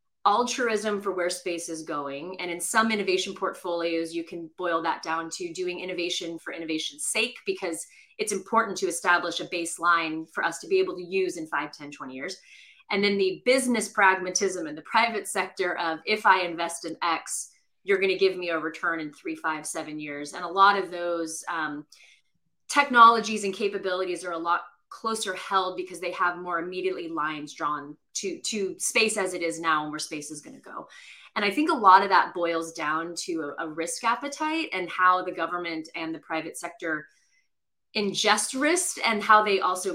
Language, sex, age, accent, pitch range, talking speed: English, female, 30-49, American, 165-210 Hz, 195 wpm